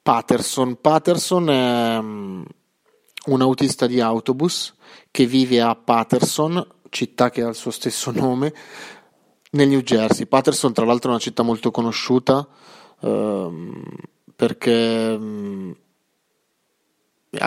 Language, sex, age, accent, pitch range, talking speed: Italian, male, 30-49, native, 115-130 Hz, 110 wpm